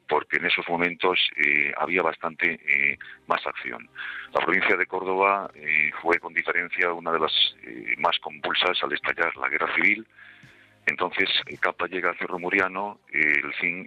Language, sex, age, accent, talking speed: Spanish, male, 50-69, Spanish, 170 wpm